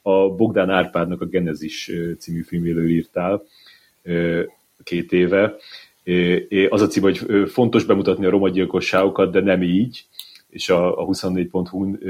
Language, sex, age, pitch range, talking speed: Hungarian, male, 30-49, 90-105 Hz, 120 wpm